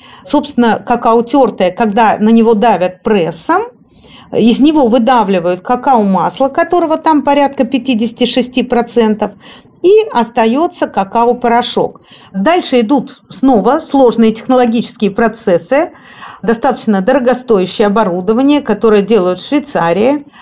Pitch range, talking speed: 210-275 Hz, 95 wpm